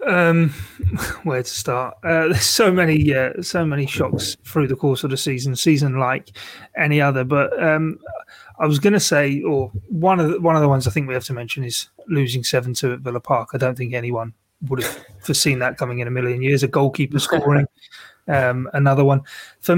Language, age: English, 30-49